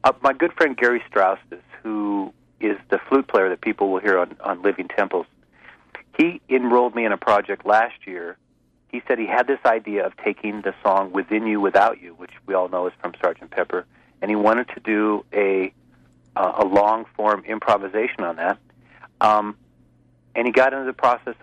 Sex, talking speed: male, 190 wpm